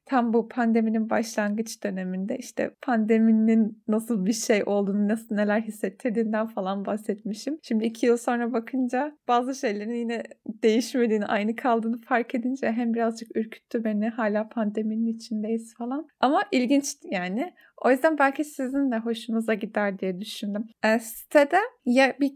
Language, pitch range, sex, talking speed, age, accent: Turkish, 225-275 Hz, female, 140 wpm, 30-49, native